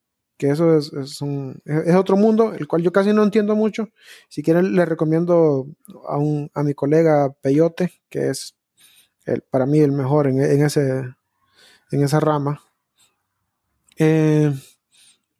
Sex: male